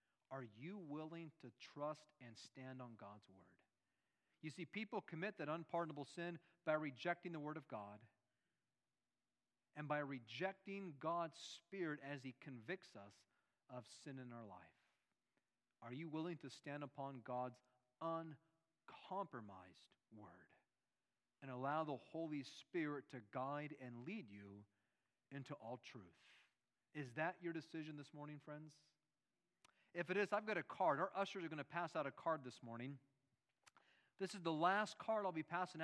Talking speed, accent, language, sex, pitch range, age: 155 wpm, American, English, male, 130-175 Hz, 40-59